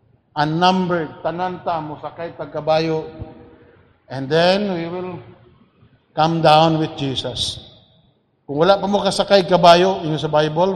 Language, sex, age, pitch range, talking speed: English, male, 50-69, 150-185 Hz, 100 wpm